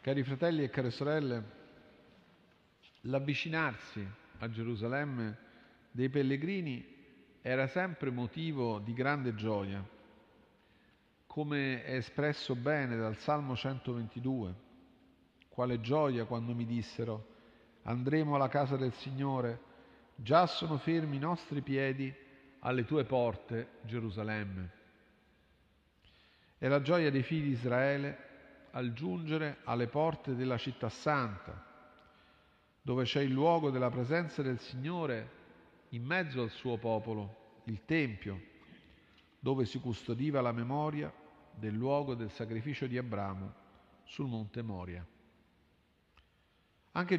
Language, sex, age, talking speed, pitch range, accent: Italian, male, 50-69, 110 wpm, 110-145 Hz, native